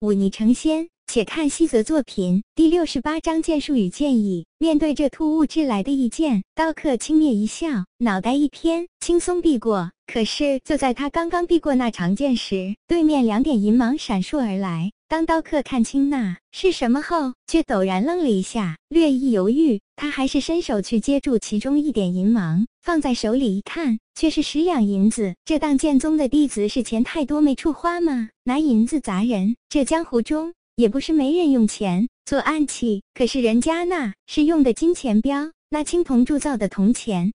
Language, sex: Chinese, male